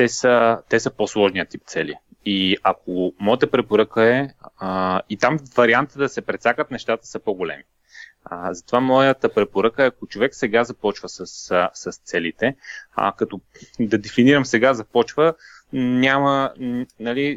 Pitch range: 105-120 Hz